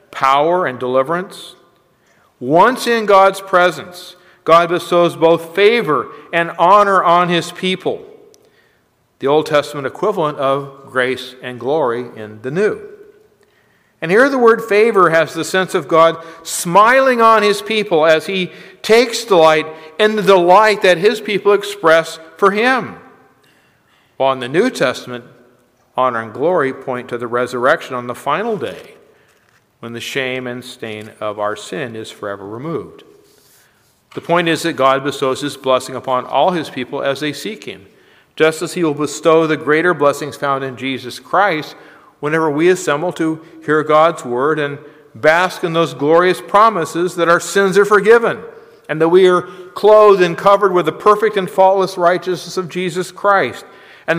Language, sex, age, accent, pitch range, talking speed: English, male, 50-69, American, 140-195 Hz, 160 wpm